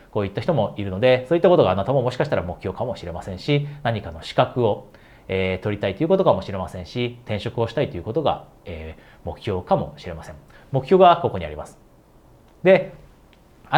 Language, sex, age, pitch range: Japanese, male, 30-49, 95-165 Hz